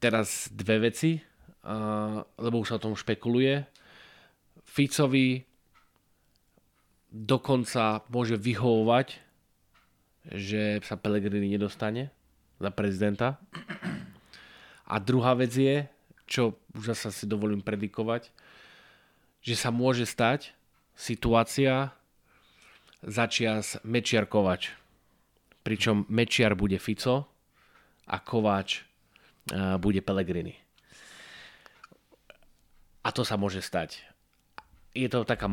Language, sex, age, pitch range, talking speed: Slovak, male, 20-39, 105-135 Hz, 90 wpm